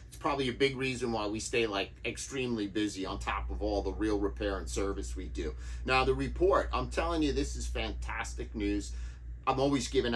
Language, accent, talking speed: English, American, 205 wpm